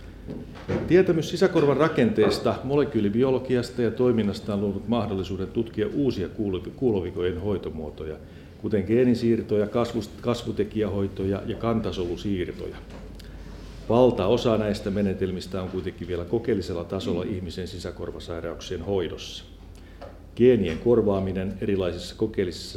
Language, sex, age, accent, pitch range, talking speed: Finnish, male, 50-69, native, 90-110 Hz, 85 wpm